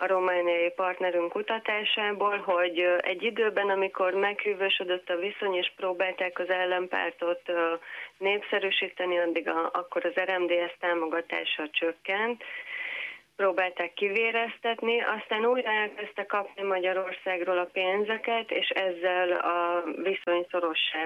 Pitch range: 170-200 Hz